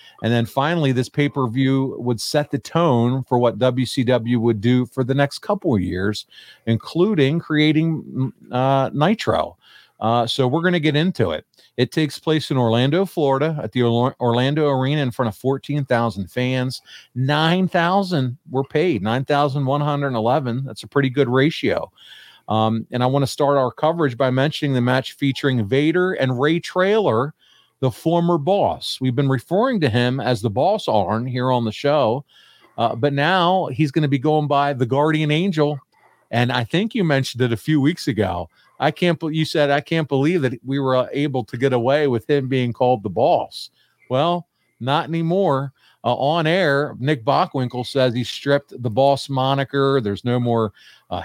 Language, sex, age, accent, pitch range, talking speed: English, male, 40-59, American, 125-150 Hz, 175 wpm